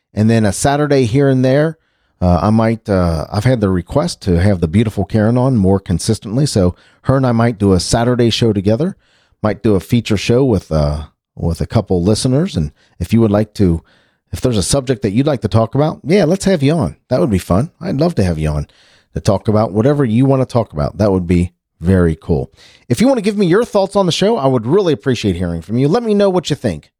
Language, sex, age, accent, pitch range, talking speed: English, male, 40-59, American, 95-145 Hz, 250 wpm